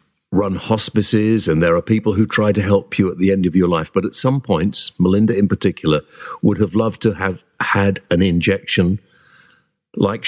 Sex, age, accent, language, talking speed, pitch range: male, 50-69, British, English, 195 wpm, 90-120 Hz